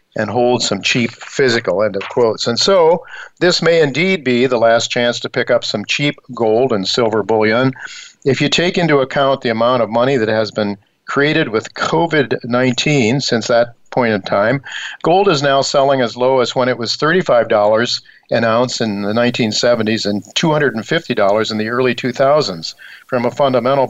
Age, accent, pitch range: 50-69, American, 110-135 Hz